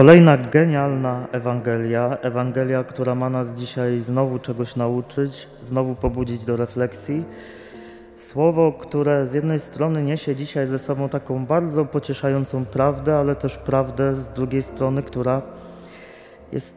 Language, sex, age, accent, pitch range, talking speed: Polish, male, 20-39, native, 120-145 Hz, 130 wpm